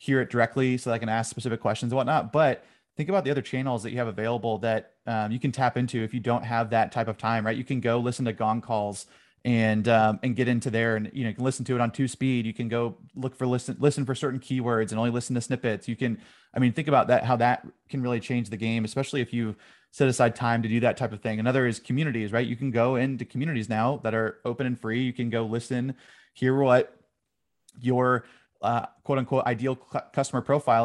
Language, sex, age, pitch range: English, male, 30-49, 115-130 Hz